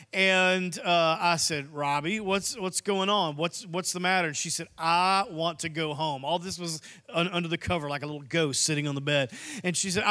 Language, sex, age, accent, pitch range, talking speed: English, male, 40-59, American, 175-225 Hz, 225 wpm